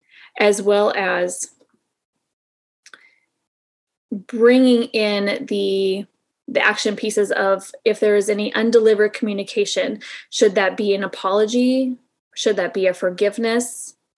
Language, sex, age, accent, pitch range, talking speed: English, female, 20-39, American, 195-230 Hz, 110 wpm